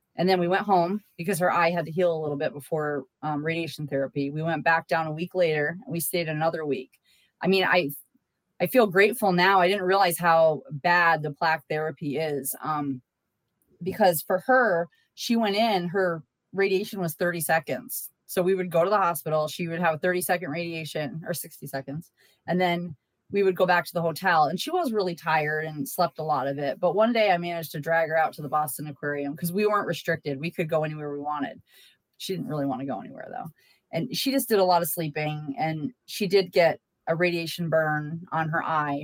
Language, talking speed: English, 220 wpm